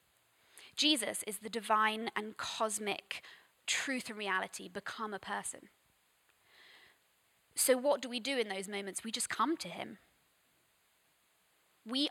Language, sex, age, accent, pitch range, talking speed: English, female, 20-39, British, 195-235 Hz, 130 wpm